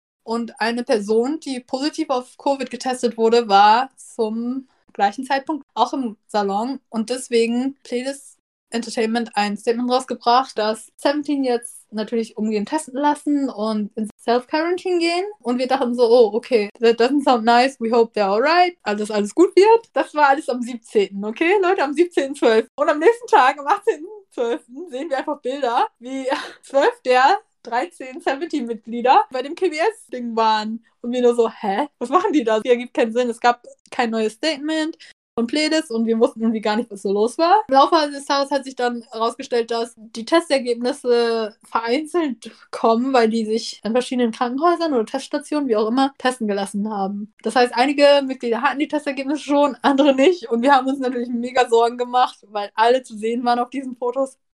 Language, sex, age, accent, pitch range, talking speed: German, female, 20-39, German, 230-285 Hz, 180 wpm